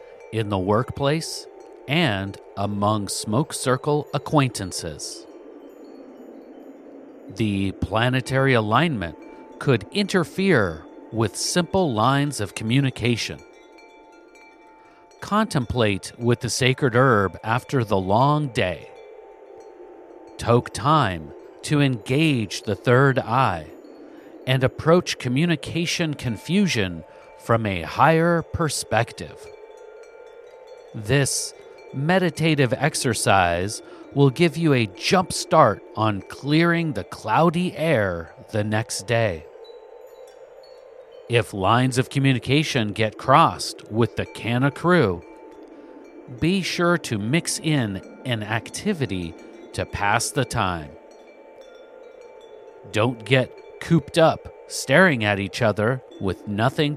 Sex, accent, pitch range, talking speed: male, American, 110-180 Hz, 95 wpm